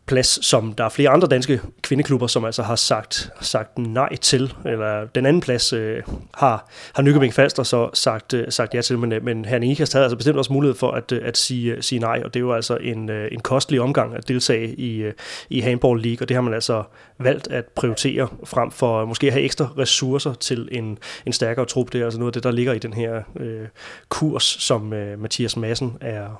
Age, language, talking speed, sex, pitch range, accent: 30-49, Danish, 225 wpm, male, 115-140 Hz, native